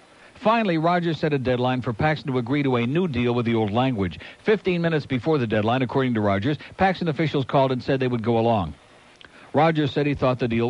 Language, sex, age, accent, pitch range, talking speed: English, male, 60-79, American, 125-160 Hz, 225 wpm